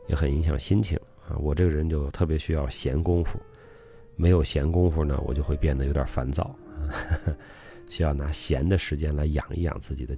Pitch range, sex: 70-90 Hz, male